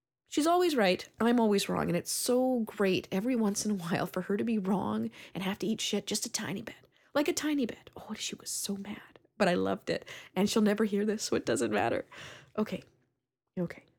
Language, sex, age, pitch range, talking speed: English, female, 20-39, 190-260 Hz, 225 wpm